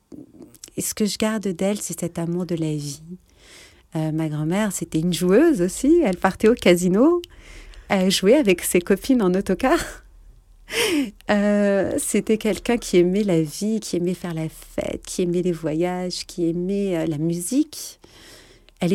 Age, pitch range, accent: 40-59, 175-225 Hz, French